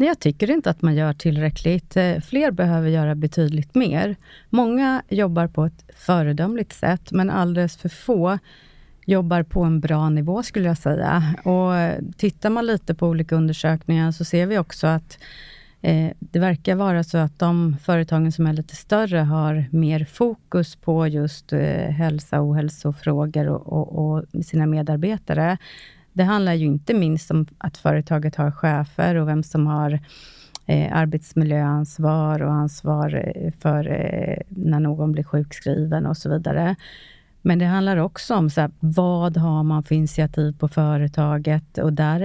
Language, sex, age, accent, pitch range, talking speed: Swedish, female, 30-49, native, 155-180 Hz, 145 wpm